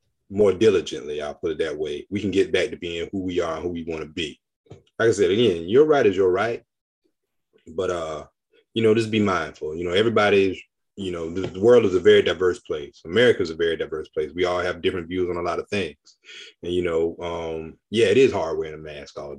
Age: 30-49